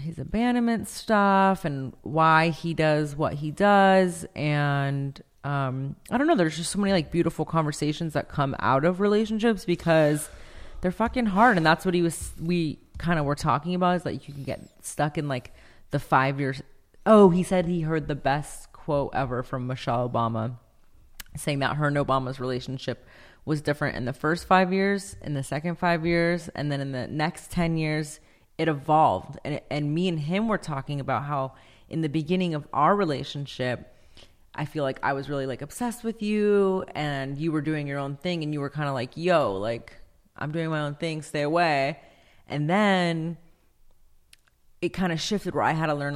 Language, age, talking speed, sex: English, 30-49, 195 wpm, female